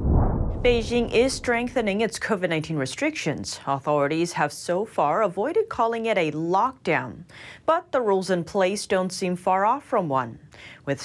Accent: American